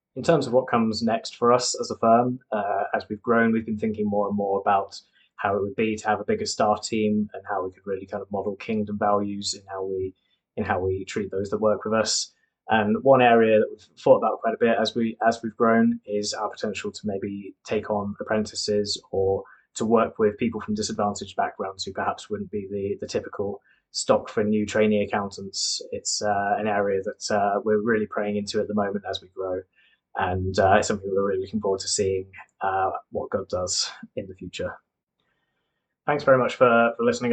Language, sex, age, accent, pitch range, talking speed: English, male, 20-39, British, 105-120 Hz, 220 wpm